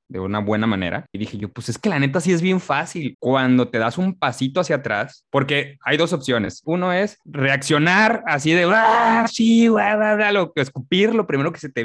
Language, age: Spanish, 20-39